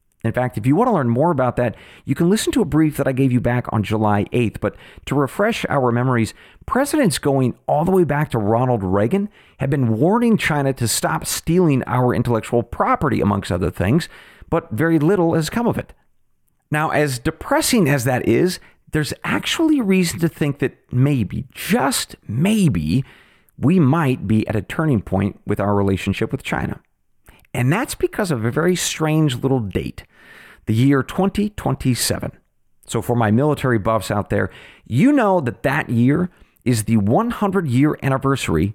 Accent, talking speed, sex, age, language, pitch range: American, 175 wpm, male, 40-59, English, 110-165 Hz